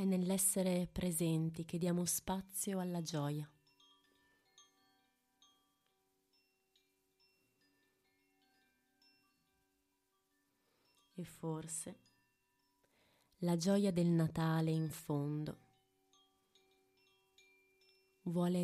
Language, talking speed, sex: Italian, 55 wpm, female